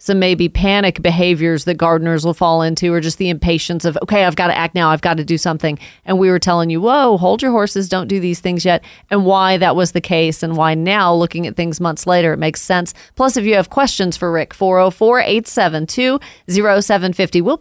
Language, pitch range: English, 175-210 Hz